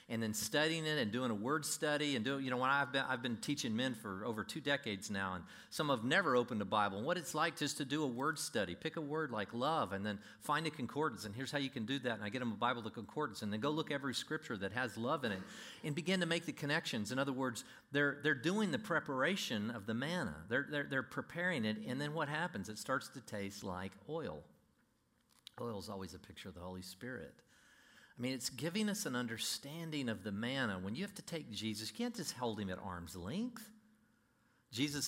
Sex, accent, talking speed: male, American, 245 wpm